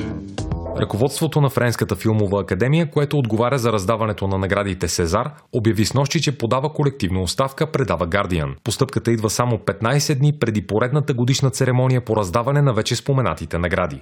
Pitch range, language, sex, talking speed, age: 105-140 Hz, Bulgarian, male, 150 wpm, 30-49